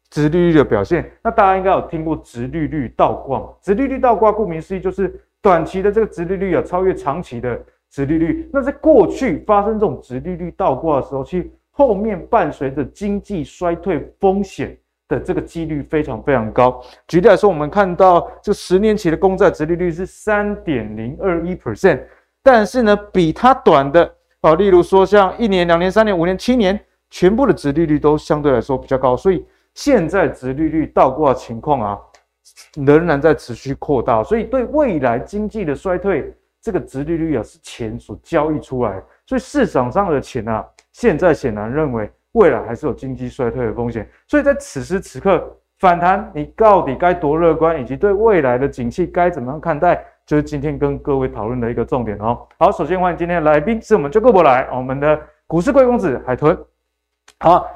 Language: Chinese